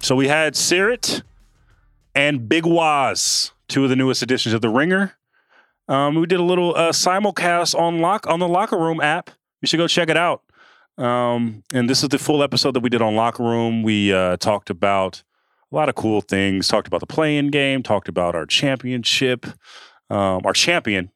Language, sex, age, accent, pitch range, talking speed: English, male, 30-49, American, 120-155 Hz, 195 wpm